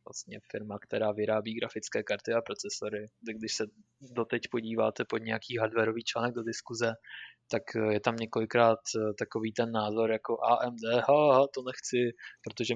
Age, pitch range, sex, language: 20-39, 110-125 Hz, male, Czech